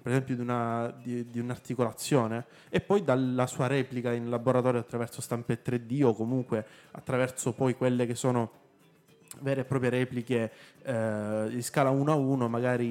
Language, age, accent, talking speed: Italian, 20-39, native, 155 wpm